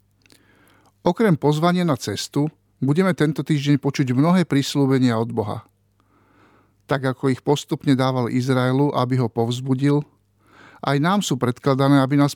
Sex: male